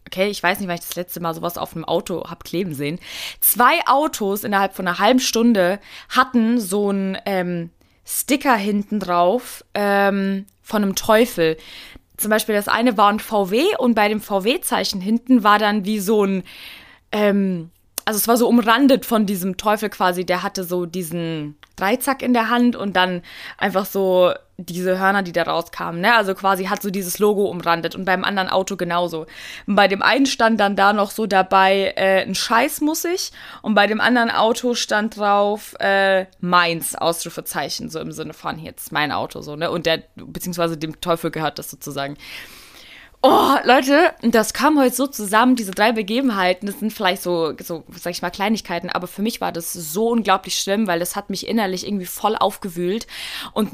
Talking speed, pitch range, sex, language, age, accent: 190 wpm, 180-235 Hz, female, German, 20-39, German